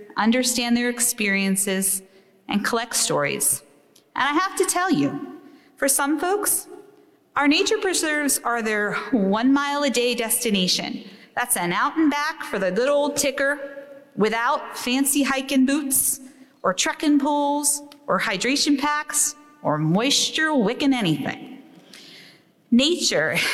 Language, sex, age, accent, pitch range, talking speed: English, female, 30-49, American, 215-290 Hz, 125 wpm